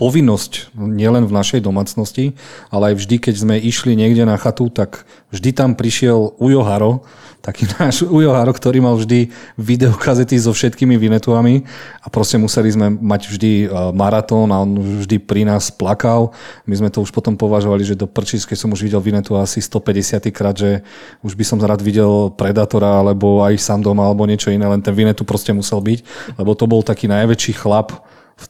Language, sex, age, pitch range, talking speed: Slovak, male, 40-59, 105-120 Hz, 180 wpm